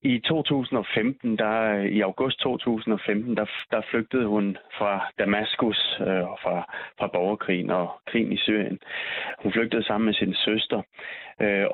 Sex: male